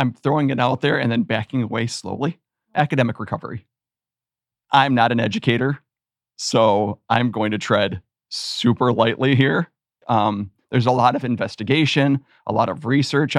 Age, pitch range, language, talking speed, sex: 40-59, 110-130 Hz, English, 150 wpm, male